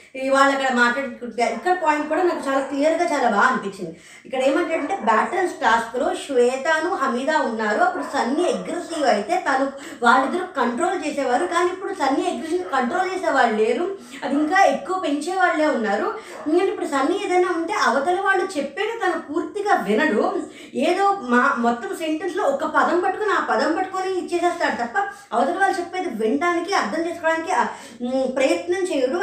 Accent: native